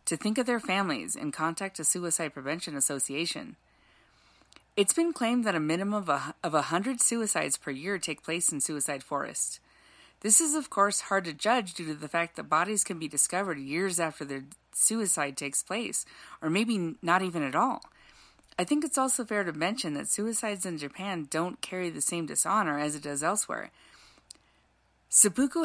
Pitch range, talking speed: 155-205 Hz, 180 wpm